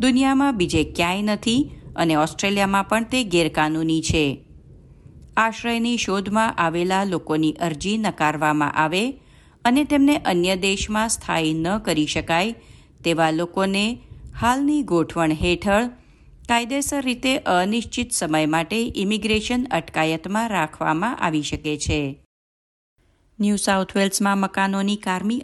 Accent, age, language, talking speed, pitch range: native, 50-69, Gujarati, 110 wpm, 160-225 Hz